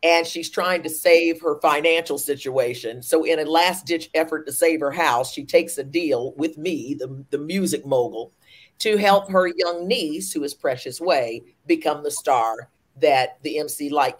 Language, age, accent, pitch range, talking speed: English, 50-69, American, 150-200 Hz, 185 wpm